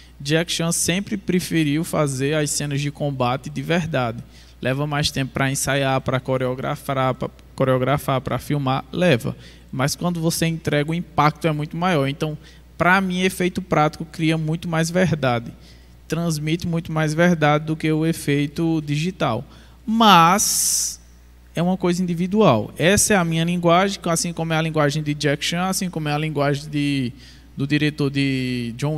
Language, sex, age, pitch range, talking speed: Portuguese, male, 20-39, 140-180 Hz, 160 wpm